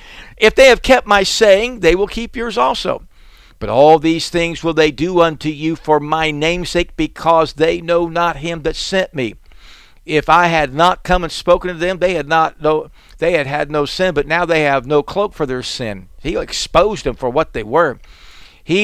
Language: English